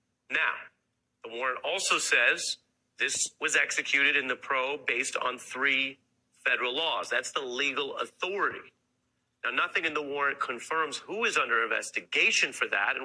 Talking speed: 150 wpm